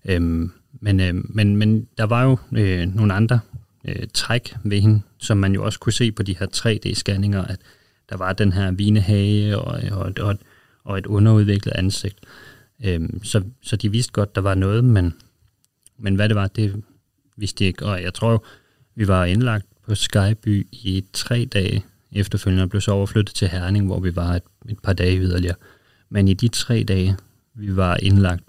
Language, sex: Danish, male